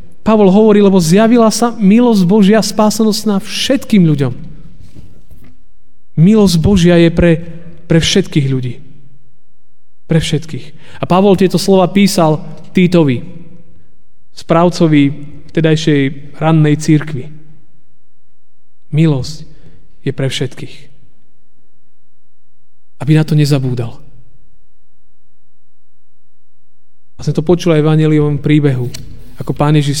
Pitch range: 135-175 Hz